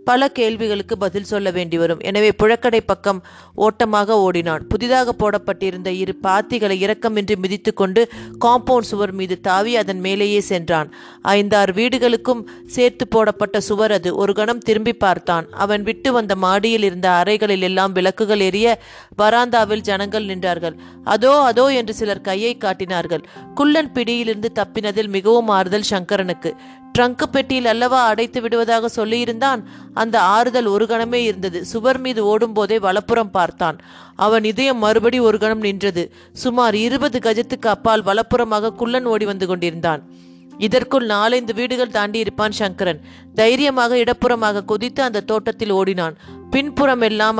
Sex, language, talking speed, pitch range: female, Tamil, 130 wpm, 195-235 Hz